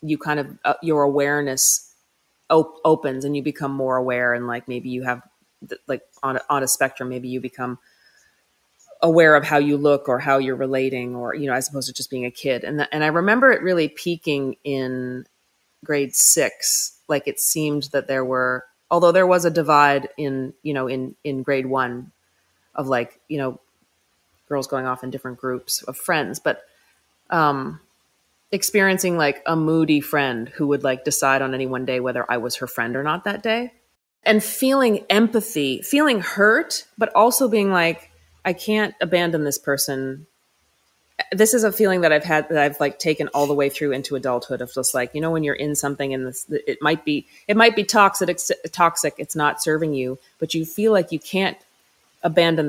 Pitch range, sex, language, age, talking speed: 130-165 Hz, female, English, 30-49, 195 wpm